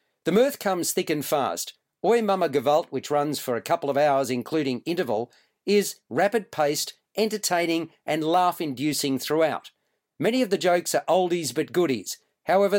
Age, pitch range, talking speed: 40-59, 140-185 Hz, 165 wpm